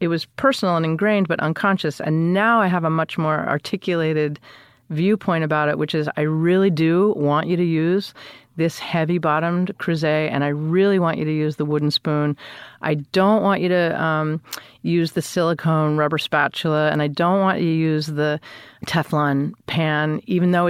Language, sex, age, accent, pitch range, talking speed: English, female, 40-59, American, 150-180 Hz, 185 wpm